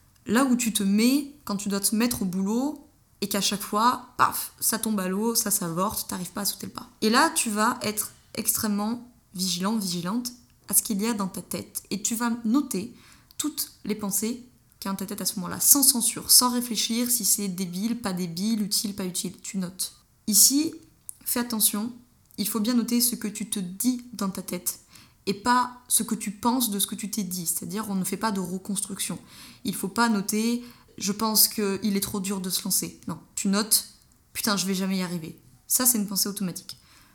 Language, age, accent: French, 20-39, French